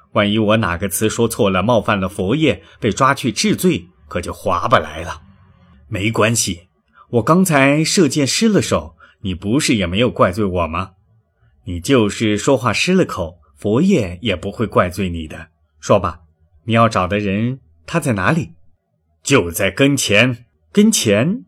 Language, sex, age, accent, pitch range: Chinese, male, 30-49, native, 90-125 Hz